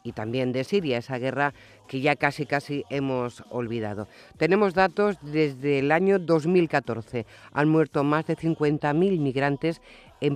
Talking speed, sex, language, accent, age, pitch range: 145 wpm, female, Spanish, Spanish, 50-69, 130-160 Hz